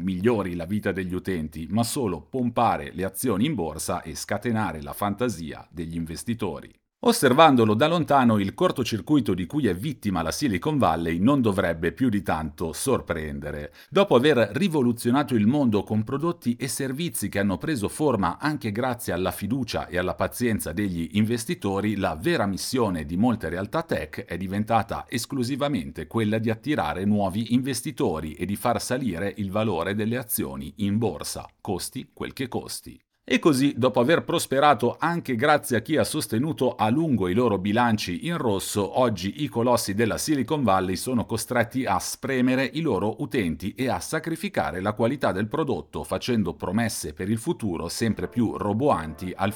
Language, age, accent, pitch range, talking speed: Italian, 50-69, native, 95-125 Hz, 160 wpm